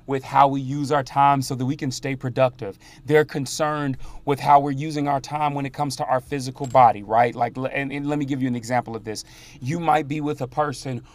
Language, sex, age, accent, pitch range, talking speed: English, male, 30-49, American, 125-145 Hz, 240 wpm